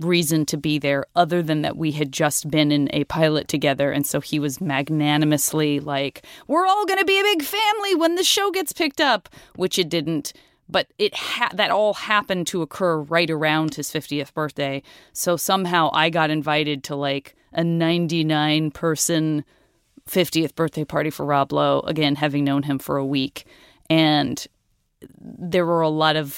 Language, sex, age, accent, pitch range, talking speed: English, female, 30-49, American, 145-170 Hz, 180 wpm